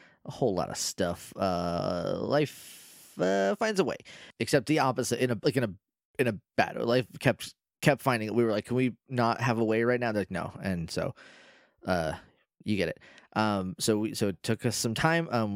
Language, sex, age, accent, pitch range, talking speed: English, male, 20-39, American, 100-135 Hz, 220 wpm